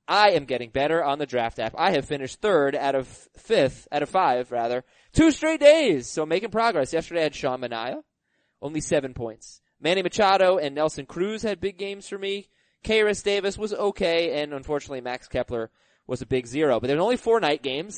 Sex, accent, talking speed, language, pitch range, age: male, American, 205 wpm, English, 140-200 Hz, 20-39